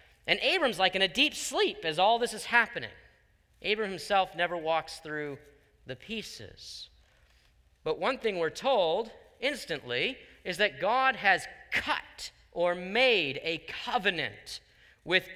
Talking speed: 135 wpm